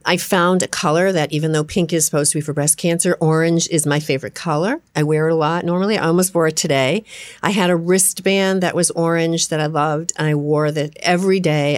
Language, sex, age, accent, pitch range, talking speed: English, female, 50-69, American, 150-180 Hz, 240 wpm